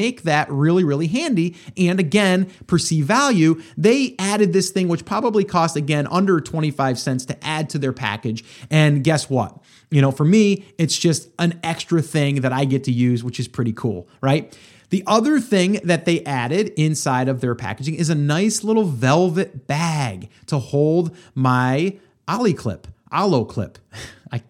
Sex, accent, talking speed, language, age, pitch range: male, American, 175 wpm, English, 30-49, 130-175 Hz